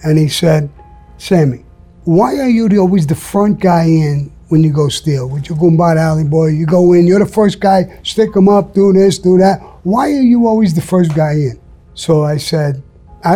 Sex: male